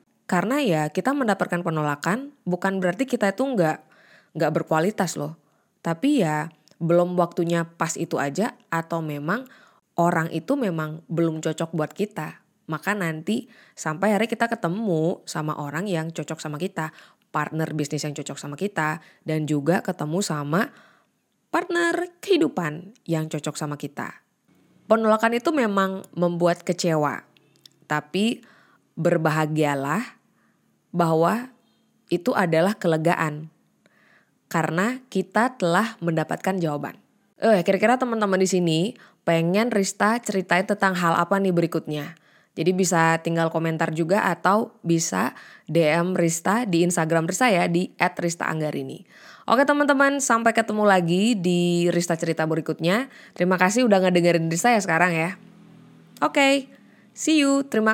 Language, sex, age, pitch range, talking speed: Indonesian, female, 20-39, 165-215 Hz, 130 wpm